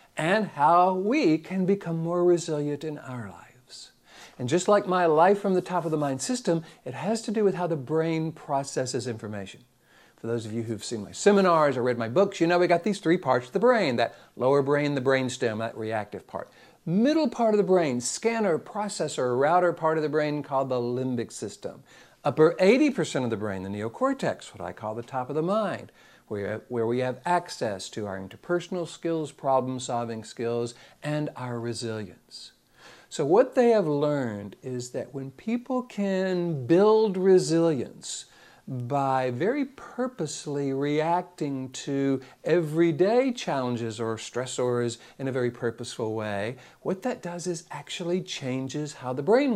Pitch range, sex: 125-185 Hz, male